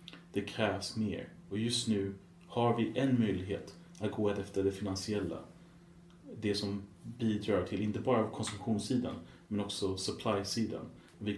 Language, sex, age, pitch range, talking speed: Swedish, male, 30-49, 95-110 Hz, 135 wpm